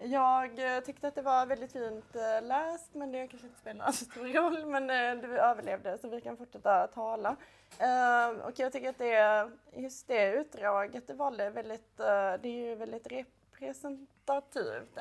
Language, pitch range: Swedish, 215-265 Hz